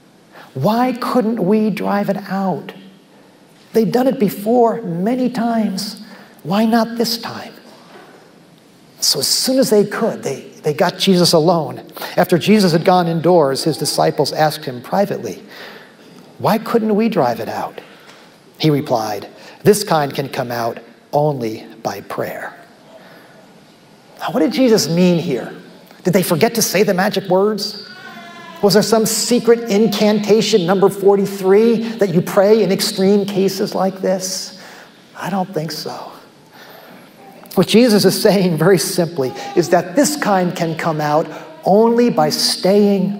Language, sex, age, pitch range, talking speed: English, male, 50-69, 165-215 Hz, 145 wpm